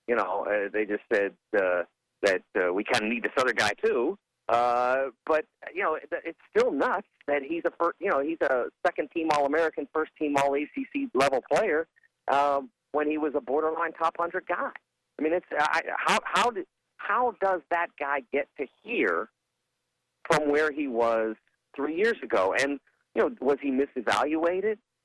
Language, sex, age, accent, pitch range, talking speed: English, male, 50-69, American, 115-185 Hz, 175 wpm